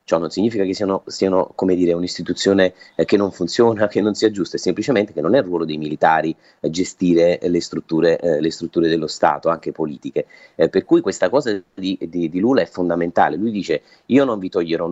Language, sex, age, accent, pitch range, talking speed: Italian, male, 30-49, native, 85-100 Hz, 200 wpm